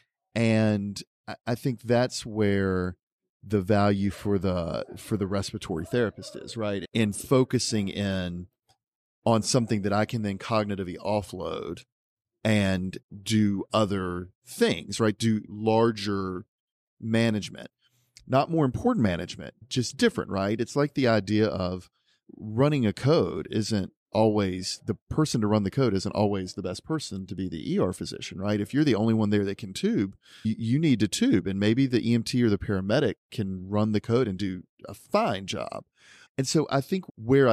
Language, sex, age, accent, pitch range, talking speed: English, male, 40-59, American, 100-125 Hz, 165 wpm